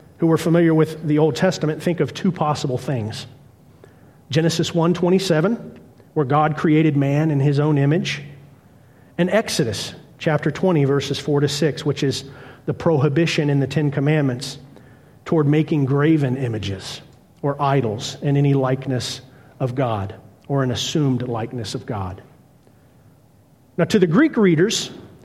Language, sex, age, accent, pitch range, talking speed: English, male, 40-59, American, 135-165 Hz, 145 wpm